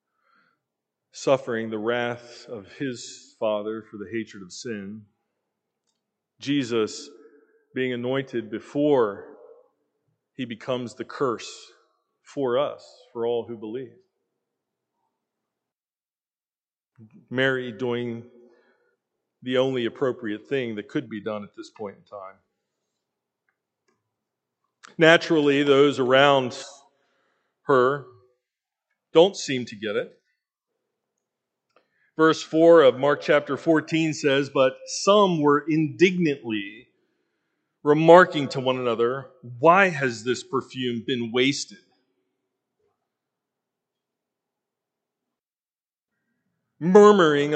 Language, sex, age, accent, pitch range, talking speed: English, male, 40-59, American, 120-160 Hz, 90 wpm